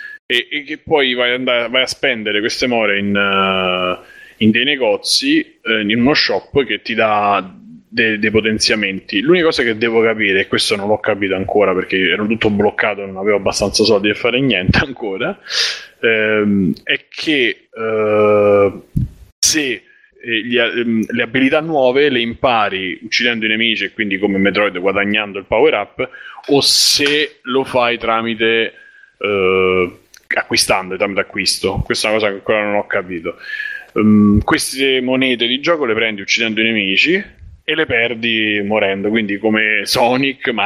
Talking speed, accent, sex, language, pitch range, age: 150 wpm, native, male, Italian, 105-130 Hz, 20-39